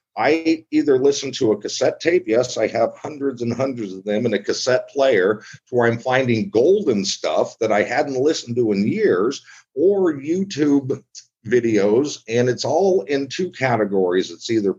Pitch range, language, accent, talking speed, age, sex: 120-150 Hz, English, American, 175 wpm, 50-69, male